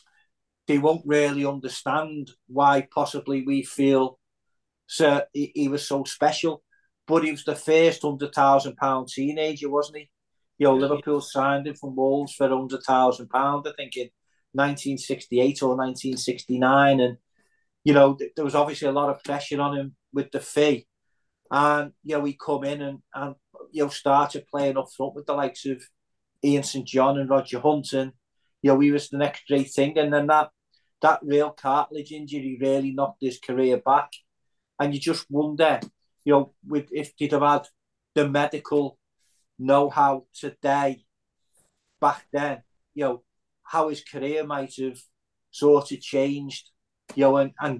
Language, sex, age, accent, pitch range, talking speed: English, male, 40-59, British, 135-145 Hz, 170 wpm